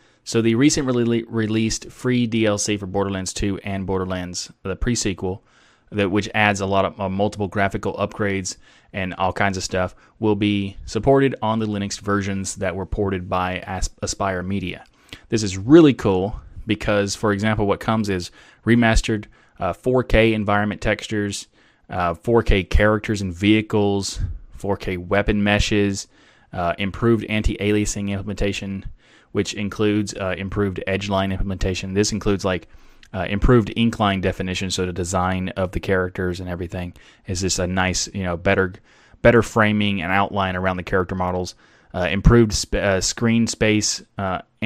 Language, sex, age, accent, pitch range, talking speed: English, male, 20-39, American, 95-105 Hz, 150 wpm